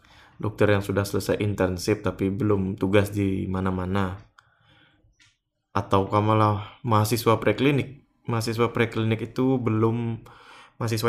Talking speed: 105 wpm